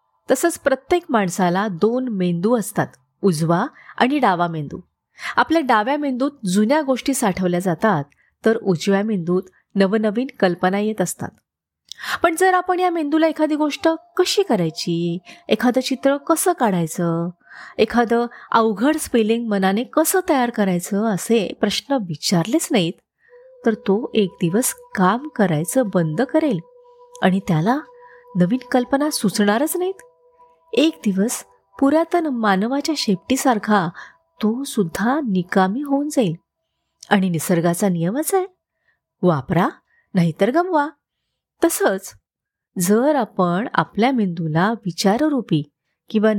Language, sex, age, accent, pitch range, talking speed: Marathi, female, 30-49, native, 185-280 Hz, 110 wpm